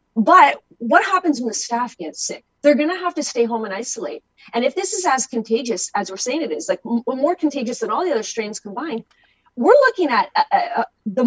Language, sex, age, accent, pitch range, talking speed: English, female, 30-49, American, 225-315 Hz, 230 wpm